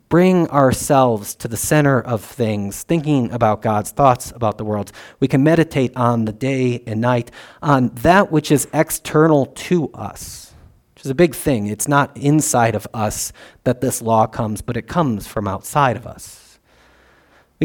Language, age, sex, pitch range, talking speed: English, 40-59, male, 115-145 Hz, 175 wpm